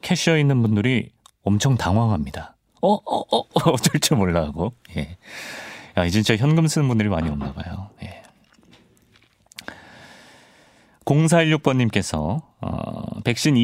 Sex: male